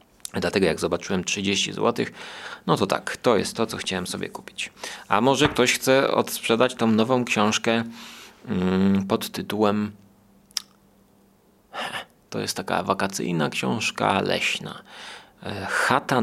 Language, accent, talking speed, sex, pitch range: Polish, native, 120 wpm, male, 100-125 Hz